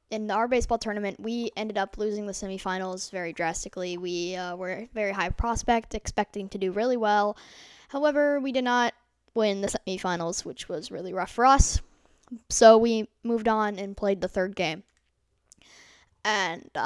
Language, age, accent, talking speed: English, 10-29, American, 165 wpm